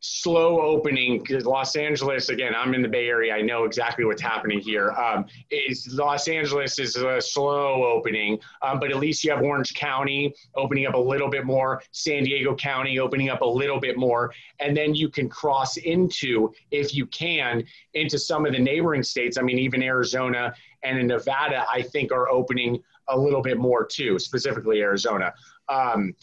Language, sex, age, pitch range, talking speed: English, male, 30-49, 125-150 Hz, 185 wpm